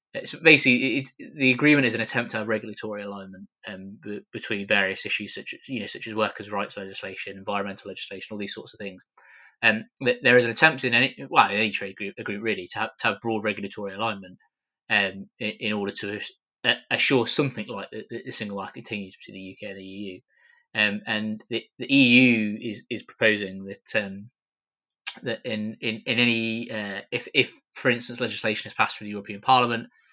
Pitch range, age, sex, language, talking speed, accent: 105-120 Hz, 20-39, male, English, 205 wpm, British